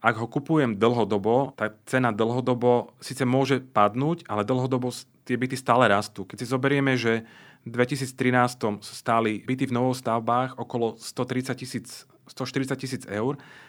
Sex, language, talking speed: male, Slovak, 145 wpm